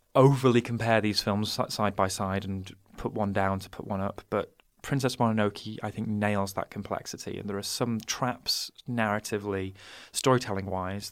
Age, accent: 20-39, British